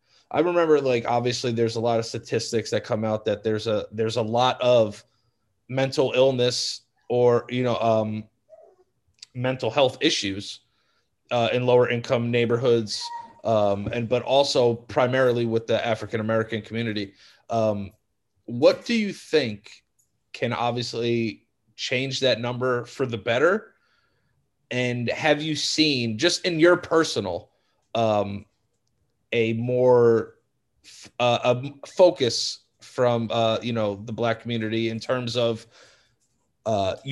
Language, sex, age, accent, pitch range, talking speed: English, male, 30-49, American, 115-140 Hz, 130 wpm